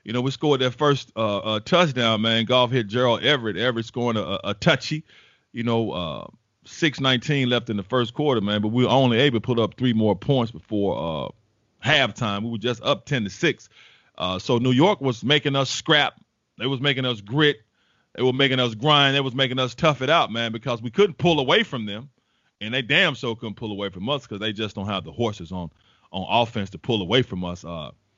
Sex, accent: male, American